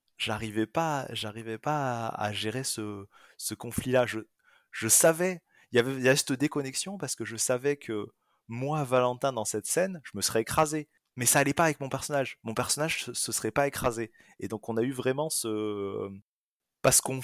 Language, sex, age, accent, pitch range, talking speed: French, male, 20-39, French, 110-140 Hz, 190 wpm